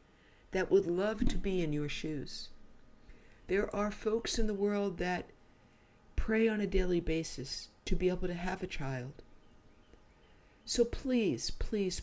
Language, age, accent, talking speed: English, 60-79, American, 150 wpm